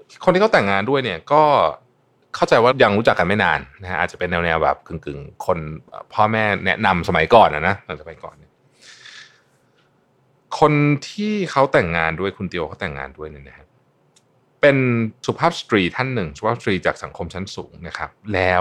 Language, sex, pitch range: Thai, male, 95-145 Hz